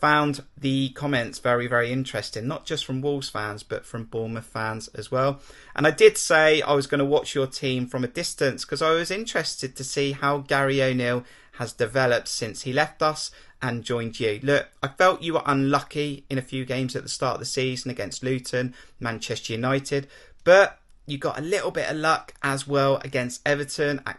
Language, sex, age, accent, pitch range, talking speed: English, male, 30-49, British, 125-160 Hz, 205 wpm